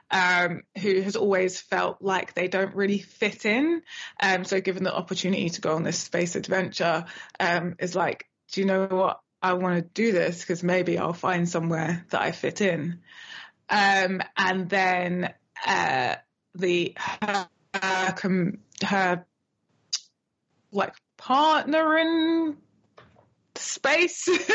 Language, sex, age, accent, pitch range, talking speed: English, female, 20-39, British, 180-230 Hz, 135 wpm